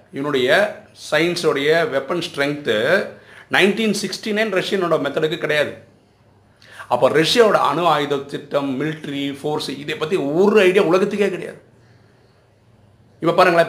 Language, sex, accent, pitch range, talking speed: Tamil, male, native, 125-185 Hz, 55 wpm